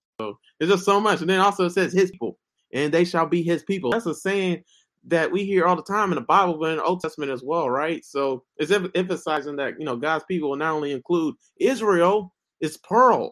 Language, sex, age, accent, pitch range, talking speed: English, male, 30-49, American, 135-185 Hz, 250 wpm